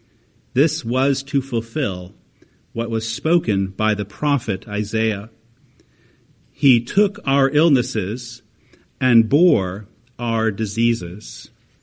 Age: 50-69